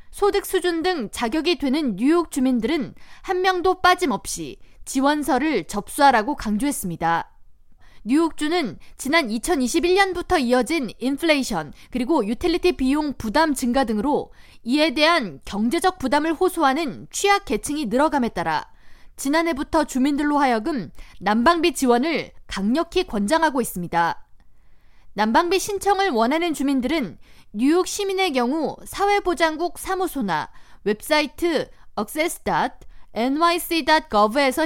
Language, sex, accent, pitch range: Korean, female, native, 235-340 Hz